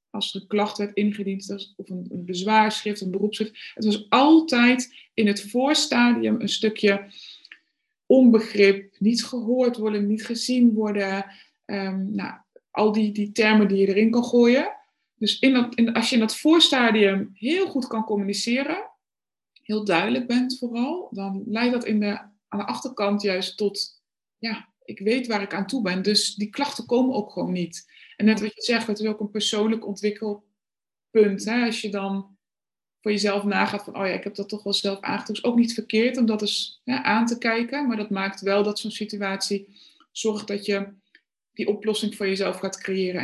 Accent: Dutch